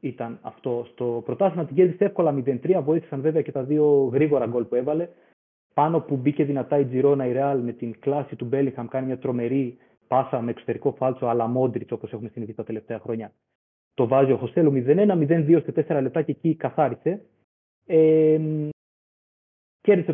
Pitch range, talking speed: 125-170 Hz, 175 wpm